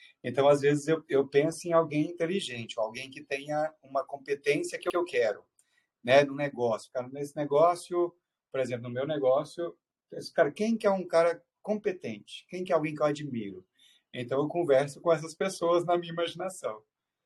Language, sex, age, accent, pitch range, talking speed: Portuguese, male, 40-59, Brazilian, 135-185 Hz, 185 wpm